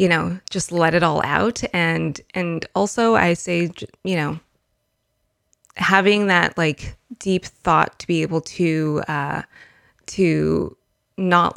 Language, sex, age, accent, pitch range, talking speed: English, female, 20-39, American, 160-195 Hz, 135 wpm